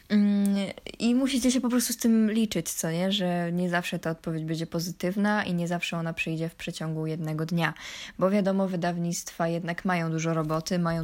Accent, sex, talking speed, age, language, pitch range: native, female, 185 wpm, 20-39, Polish, 170-210 Hz